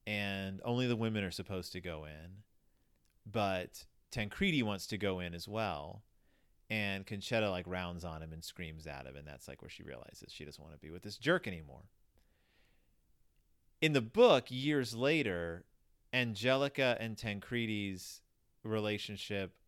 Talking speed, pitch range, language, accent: 155 wpm, 95-125 Hz, English, American